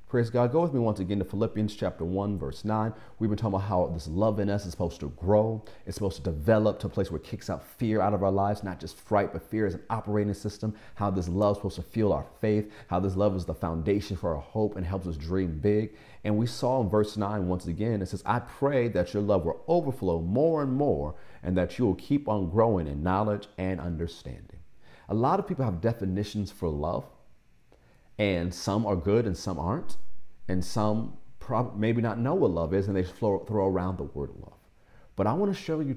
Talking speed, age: 235 wpm, 40-59